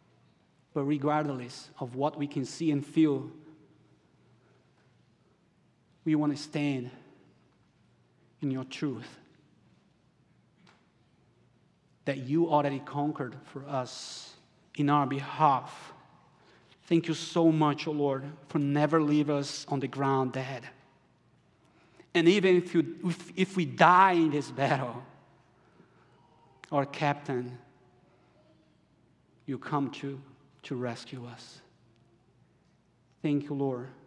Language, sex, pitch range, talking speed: English, male, 130-150 Hz, 110 wpm